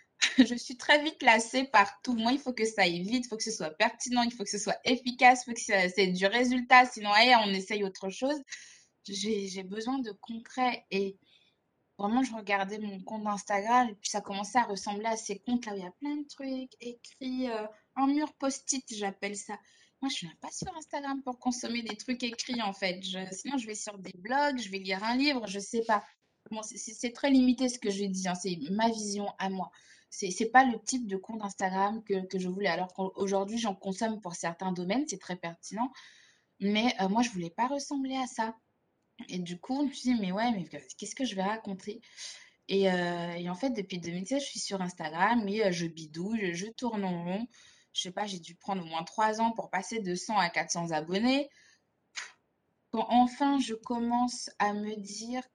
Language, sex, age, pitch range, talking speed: French, female, 20-39, 195-245 Hz, 225 wpm